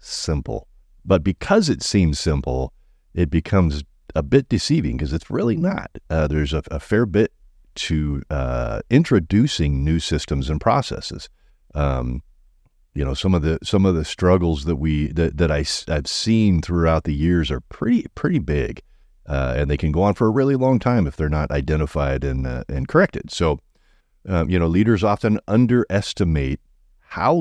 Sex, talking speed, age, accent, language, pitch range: male, 175 wpm, 40-59, American, English, 70-95 Hz